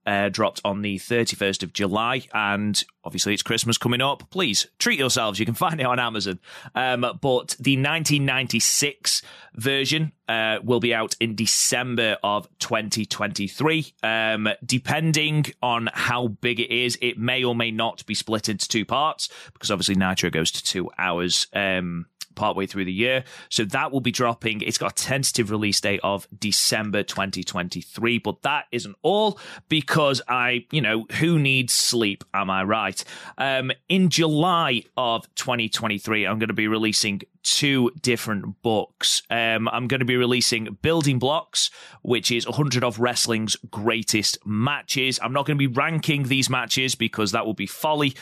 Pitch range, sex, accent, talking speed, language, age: 105-130 Hz, male, British, 165 wpm, English, 30-49